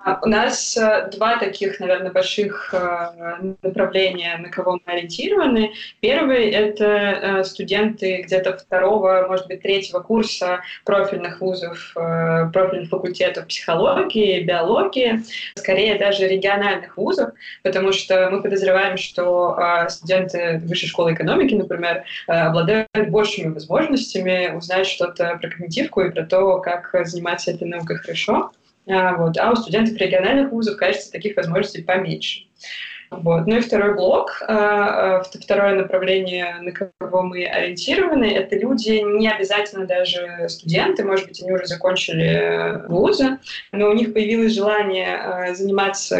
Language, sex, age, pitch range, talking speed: Russian, female, 20-39, 180-200 Hz, 120 wpm